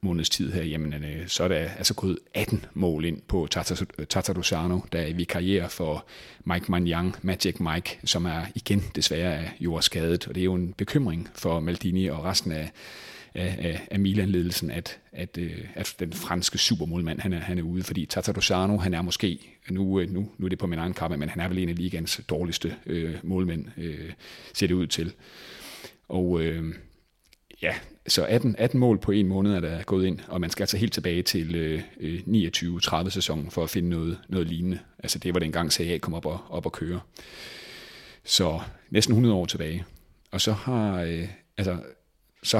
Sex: male